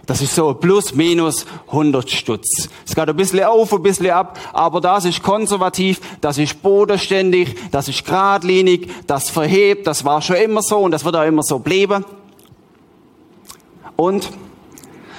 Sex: male